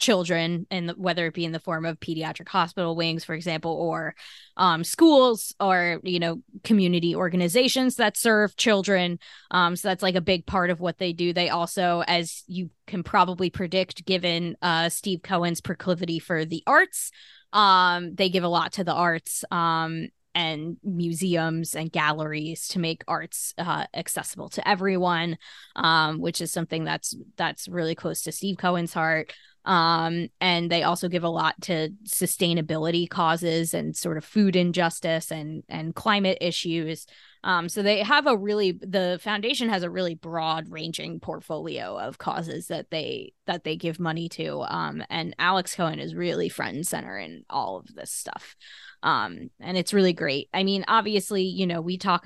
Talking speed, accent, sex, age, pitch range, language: 175 wpm, American, female, 20-39, 165-195 Hz, English